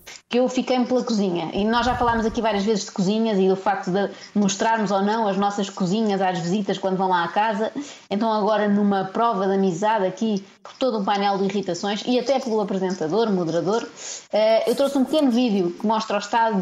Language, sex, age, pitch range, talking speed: Portuguese, female, 20-39, 190-230 Hz, 210 wpm